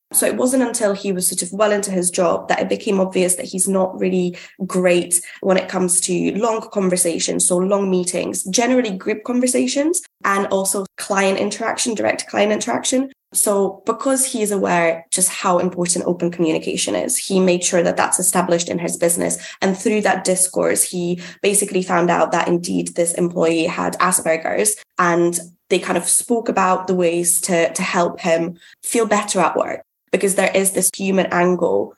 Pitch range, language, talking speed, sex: 175-200 Hz, English, 180 wpm, female